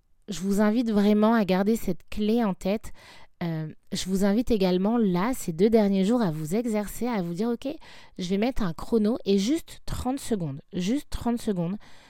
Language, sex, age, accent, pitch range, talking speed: French, female, 20-39, French, 175-220 Hz, 195 wpm